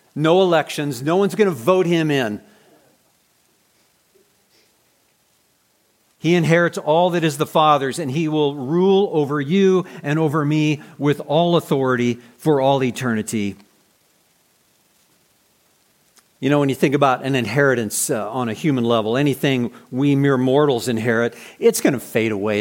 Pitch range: 125-160 Hz